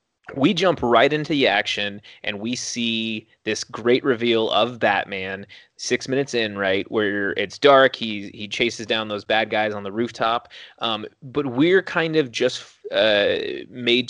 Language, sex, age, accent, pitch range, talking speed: English, male, 30-49, American, 105-135 Hz, 165 wpm